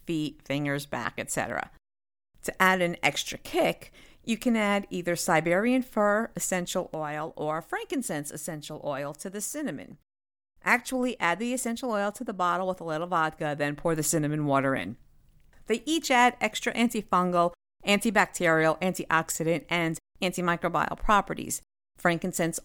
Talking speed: 140 wpm